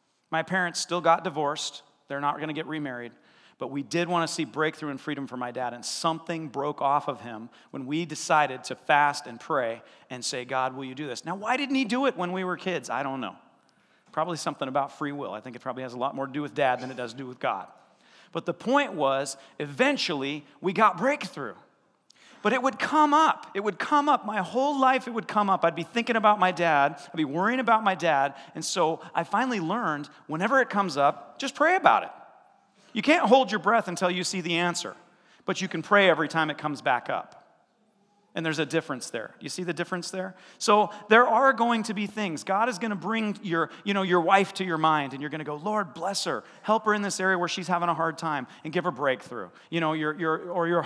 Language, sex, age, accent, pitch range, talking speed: English, male, 40-59, American, 155-210 Hz, 245 wpm